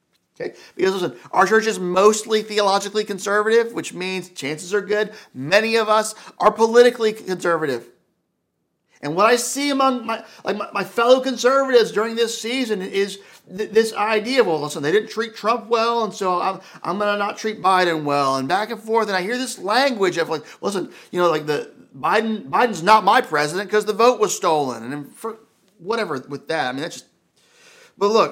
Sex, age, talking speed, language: male, 40-59, 195 wpm, English